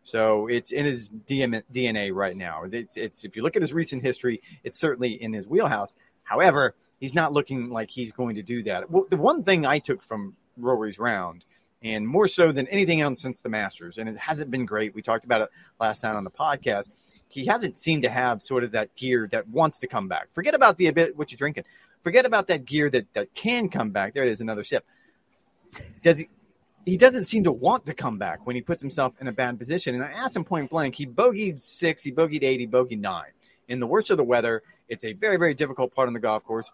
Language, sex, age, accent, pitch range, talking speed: English, male, 30-49, American, 120-160 Hz, 235 wpm